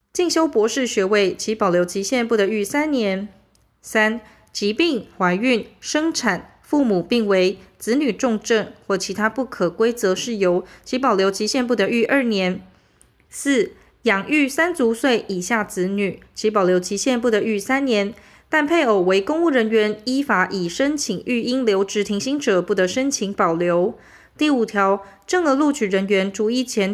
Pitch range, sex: 195-260 Hz, female